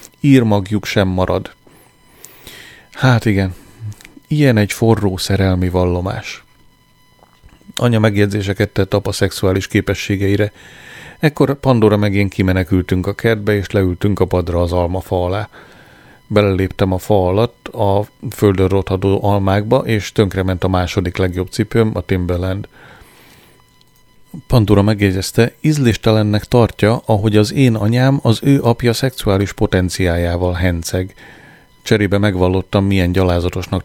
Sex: male